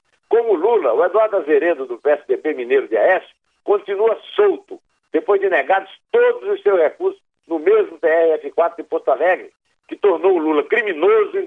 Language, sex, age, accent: Portuguese, male, 60-79, Brazilian